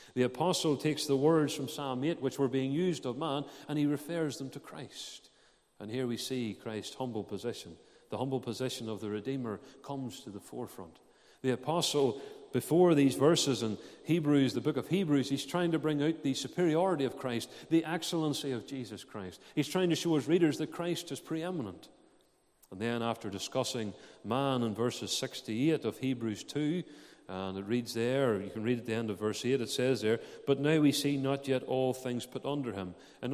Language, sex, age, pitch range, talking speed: English, male, 40-59, 115-145 Hz, 200 wpm